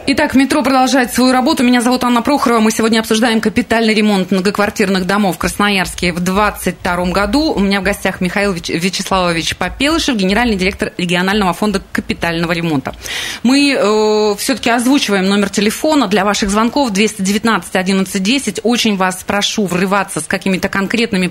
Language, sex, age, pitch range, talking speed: Russian, female, 30-49, 180-230 Hz, 145 wpm